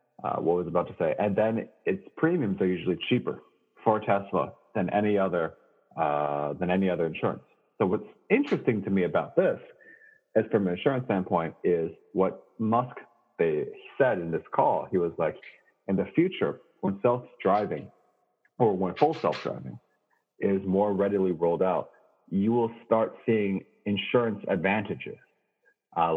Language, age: English, 40-59